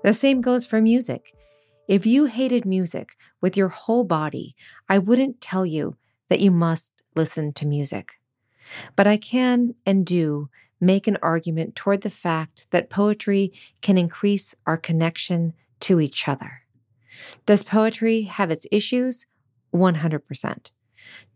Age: 40-59